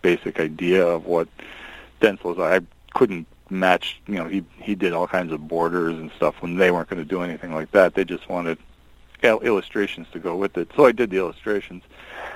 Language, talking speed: English, 205 wpm